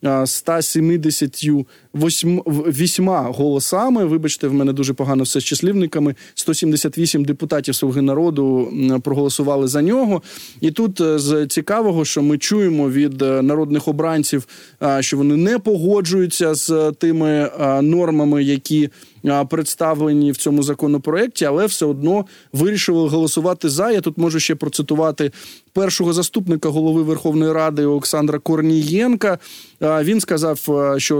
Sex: male